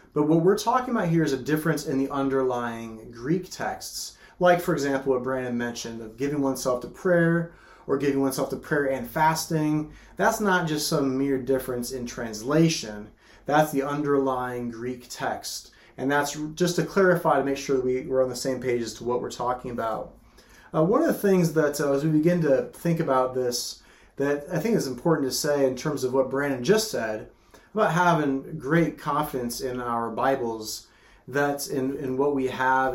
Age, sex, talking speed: 30-49, male, 195 wpm